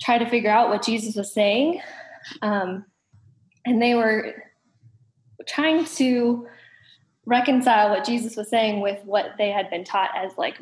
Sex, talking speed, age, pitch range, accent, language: female, 155 wpm, 10-29, 205-240 Hz, American, English